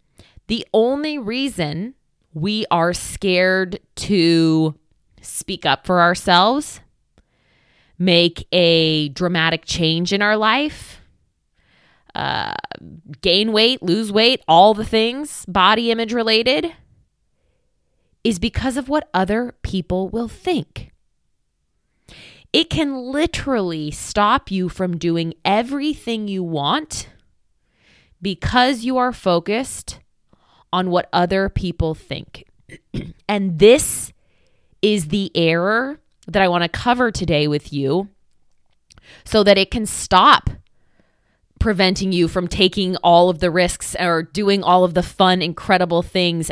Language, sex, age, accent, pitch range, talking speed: English, female, 20-39, American, 170-225 Hz, 115 wpm